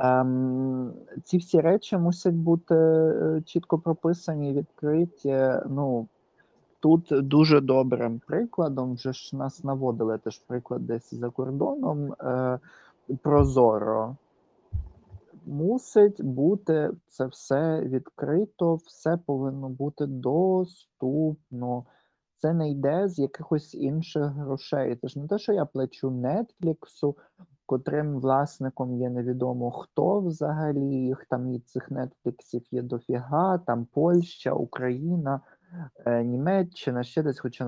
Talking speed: 105 wpm